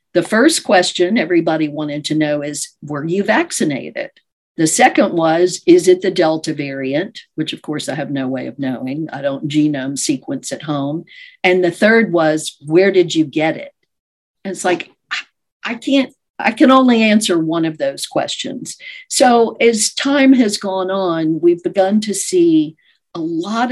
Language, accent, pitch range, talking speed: English, American, 160-245 Hz, 170 wpm